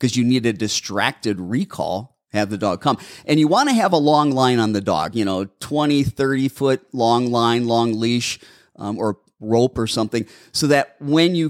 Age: 30-49